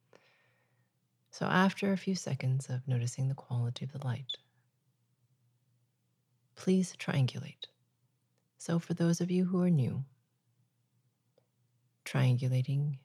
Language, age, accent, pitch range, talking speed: English, 30-49, American, 125-155 Hz, 105 wpm